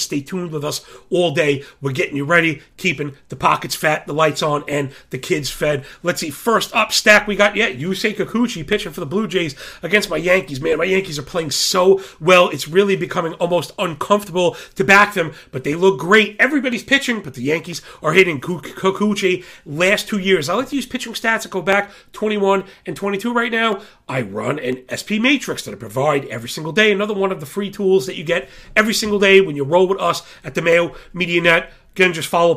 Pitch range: 160-195 Hz